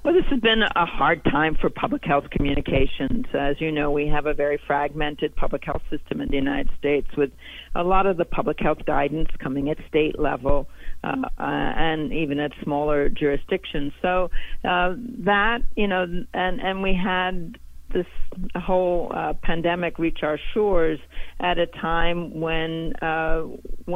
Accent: American